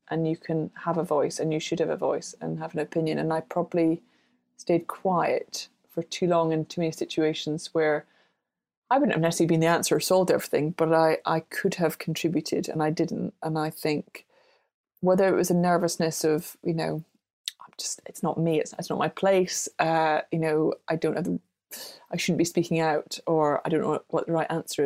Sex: female